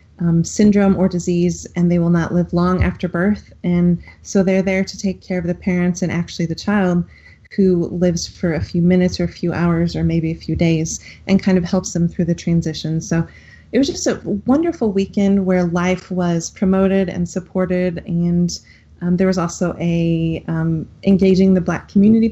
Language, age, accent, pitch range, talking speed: English, 30-49, American, 175-190 Hz, 195 wpm